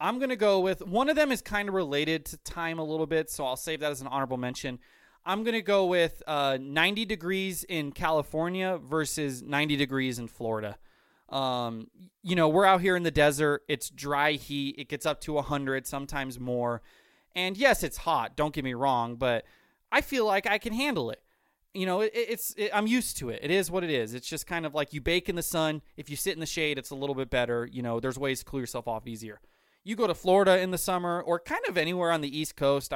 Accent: American